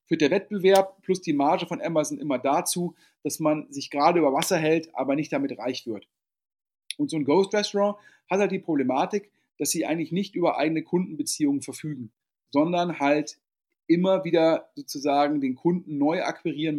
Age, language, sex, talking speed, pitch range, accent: 40-59, German, male, 170 wpm, 155-205 Hz, German